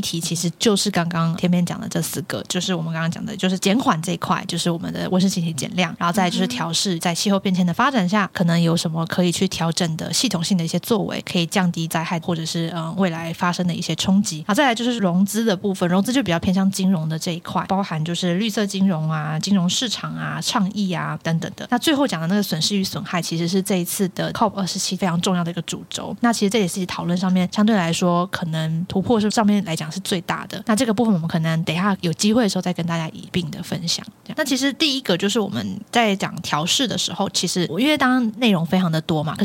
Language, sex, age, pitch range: Chinese, female, 20-39, 170-205 Hz